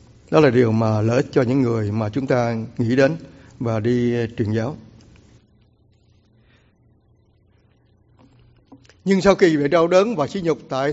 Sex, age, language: male, 60-79, English